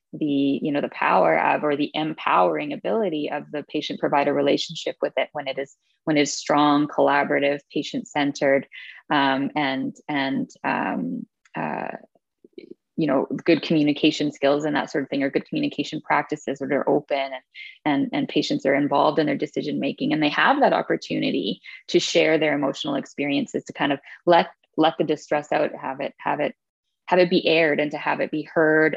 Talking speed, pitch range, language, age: 185 wpm, 145-180 Hz, English, 20-39